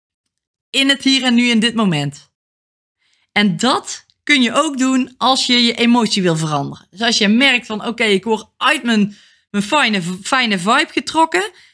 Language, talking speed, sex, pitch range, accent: Dutch, 180 wpm, female, 195-270 Hz, Dutch